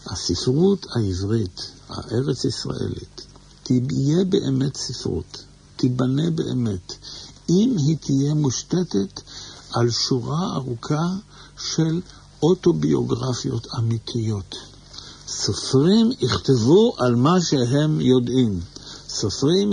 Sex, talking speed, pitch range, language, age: male, 80 wpm, 115-150 Hz, Hebrew, 60-79